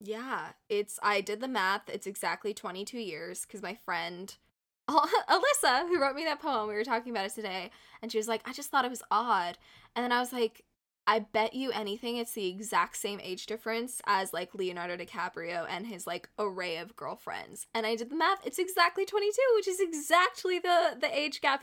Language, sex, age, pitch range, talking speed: English, female, 10-29, 205-250 Hz, 210 wpm